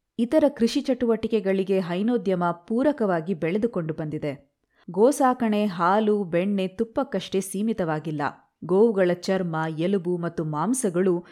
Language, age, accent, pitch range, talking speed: Kannada, 20-39, native, 170-220 Hz, 90 wpm